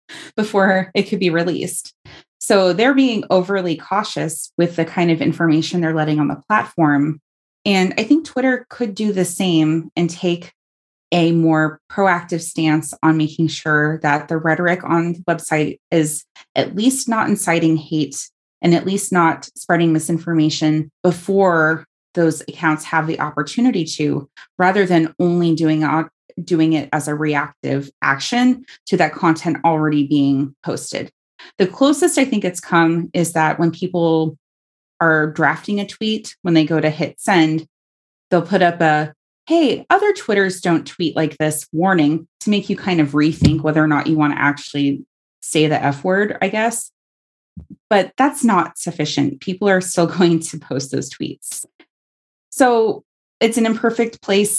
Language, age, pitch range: English, 20-39, 155-195 Hz